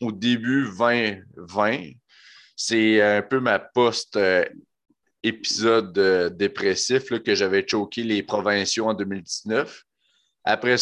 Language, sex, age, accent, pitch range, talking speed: French, male, 30-49, Canadian, 105-120 Hz, 105 wpm